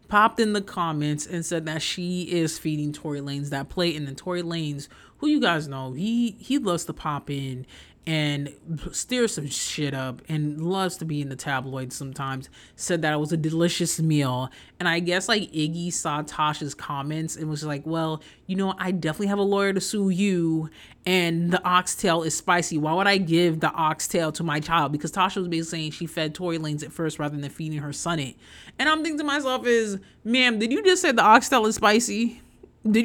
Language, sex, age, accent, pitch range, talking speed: English, male, 30-49, American, 145-190 Hz, 210 wpm